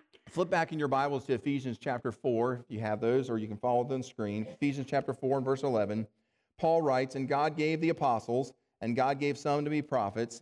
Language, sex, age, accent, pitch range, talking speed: English, male, 40-59, American, 120-150 Hz, 235 wpm